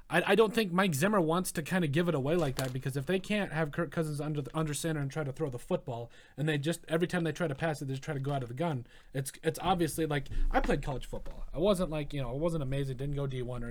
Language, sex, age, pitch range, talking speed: English, male, 30-49, 140-175 Hz, 300 wpm